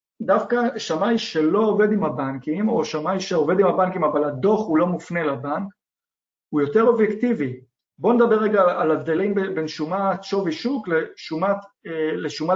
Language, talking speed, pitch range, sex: Hebrew, 145 wpm, 155-230 Hz, male